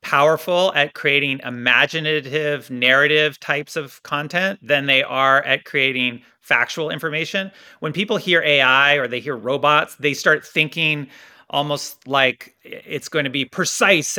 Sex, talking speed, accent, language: male, 140 wpm, American, English